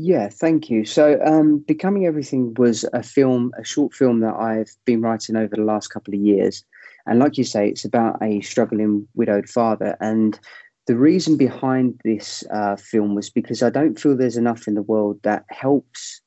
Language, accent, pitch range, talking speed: English, British, 105-120 Hz, 190 wpm